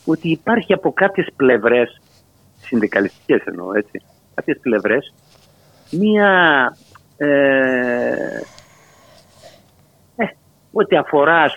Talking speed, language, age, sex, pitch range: 85 wpm, Greek, 50-69, male, 125-180 Hz